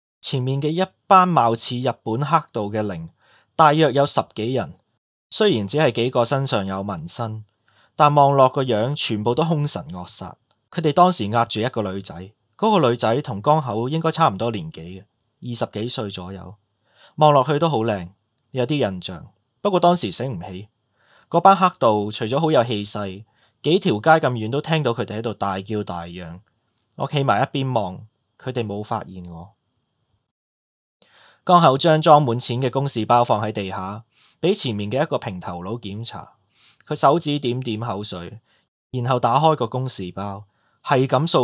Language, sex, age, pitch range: Chinese, male, 20-39, 100-135 Hz